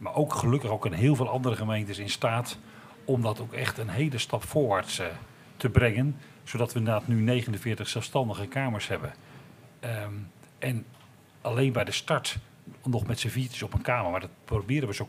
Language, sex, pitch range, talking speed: Dutch, male, 110-135 Hz, 185 wpm